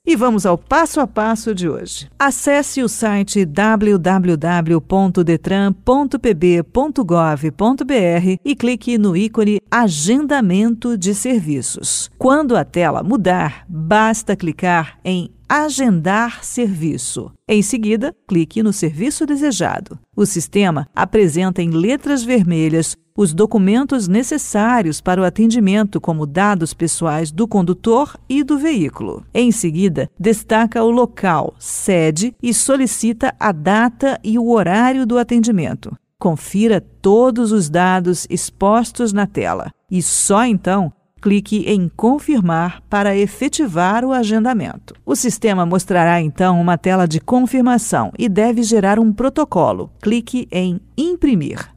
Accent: Brazilian